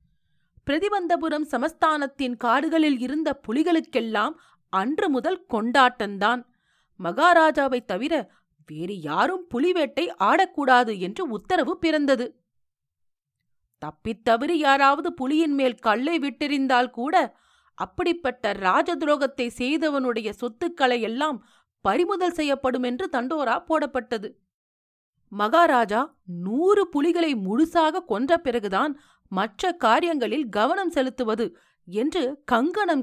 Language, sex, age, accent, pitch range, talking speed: Tamil, female, 40-59, native, 225-320 Hz, 85 wpm